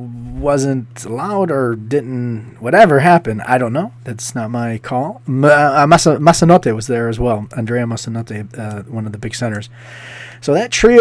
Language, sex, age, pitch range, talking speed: English, male, 30-49, 120-145 Hz, 160 wpm